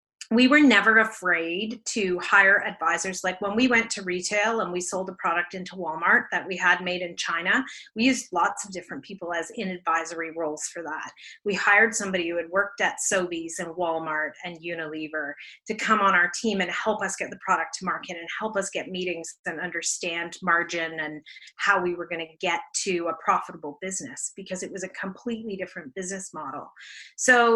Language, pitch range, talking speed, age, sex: English, 180-225 Hz, 200 wpm, 30-49, female